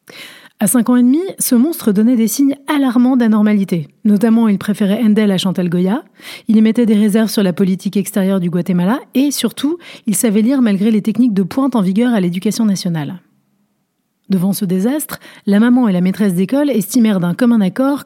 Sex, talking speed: female, 195 wpm